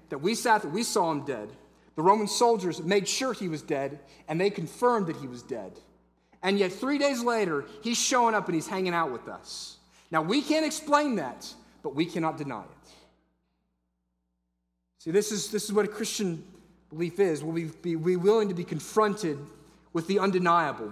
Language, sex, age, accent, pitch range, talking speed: English, male, 30-49, American, 140-205 Hz, 190 wpm